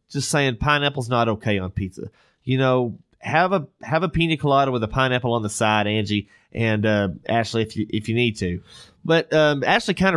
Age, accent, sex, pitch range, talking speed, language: 30-49, American, male, 115-150 Hz, 205 wpm, English